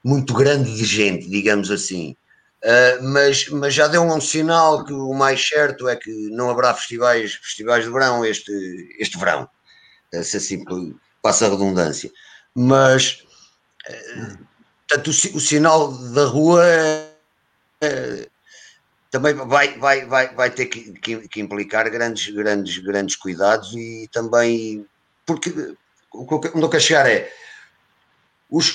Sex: male